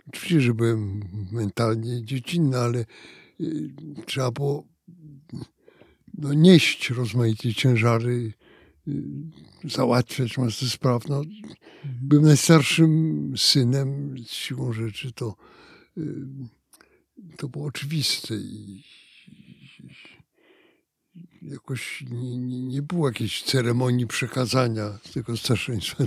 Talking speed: 85 wpm